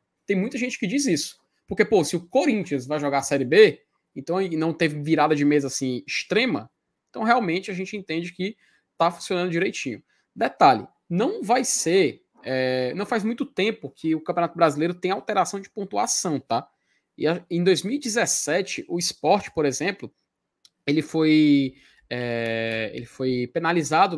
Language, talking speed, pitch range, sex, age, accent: Portuguese, 160 wpm, 160-240 Hz, male, 20-39, Brazilian